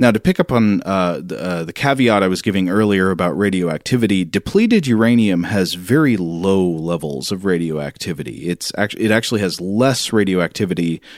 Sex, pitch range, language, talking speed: male, 85-110 Hz, English, 165 wpm